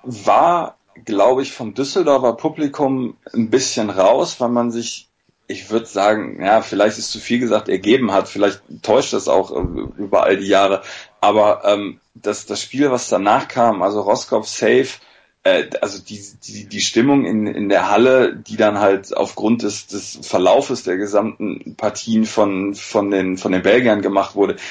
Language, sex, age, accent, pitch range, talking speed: German, male, 30-49, German, 100-120 Hz, 170 wpm